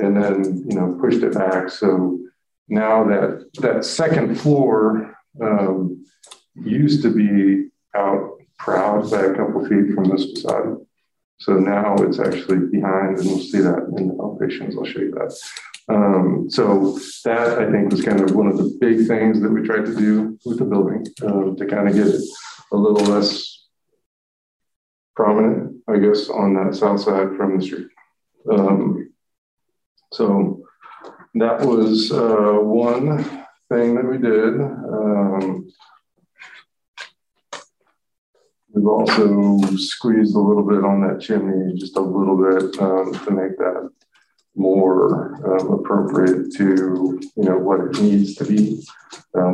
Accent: American